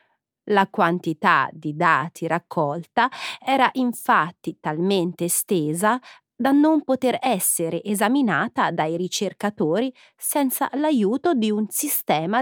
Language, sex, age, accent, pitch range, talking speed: Italian, female, 30-49, native, 165-255 Hz, 100 wpm